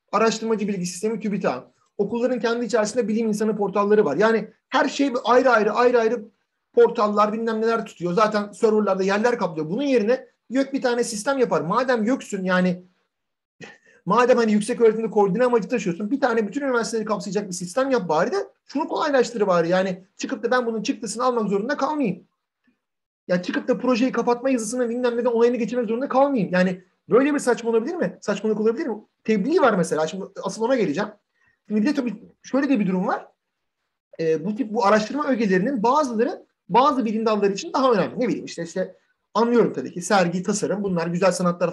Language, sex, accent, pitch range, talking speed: Turkish, male, native, 185-245 Hz, 180 wpm